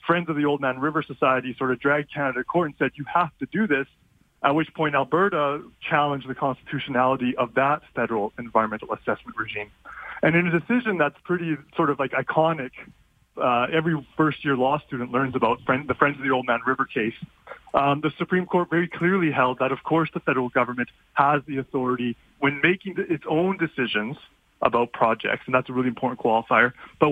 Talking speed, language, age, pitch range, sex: 195 wpm, English, 20-39, 125-160 Hz, male